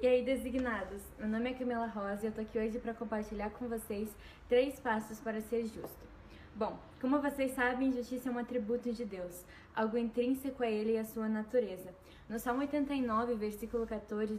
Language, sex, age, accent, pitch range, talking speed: Portuguese, female, 10-29, Brazilian, 225-260 Hz, 190 wpm